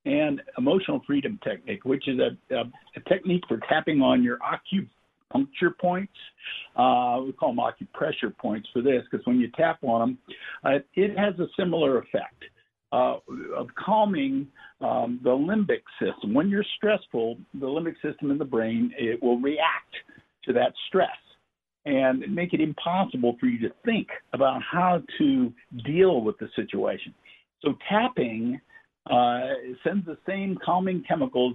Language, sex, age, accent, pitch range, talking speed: English, male, 60-79, American, 135-210 Hz, 155 wpm